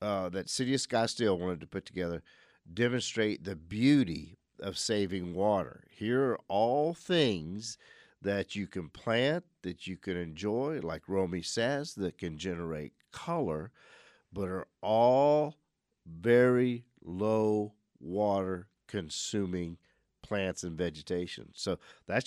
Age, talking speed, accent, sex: 50-69, 120 wpm, American, male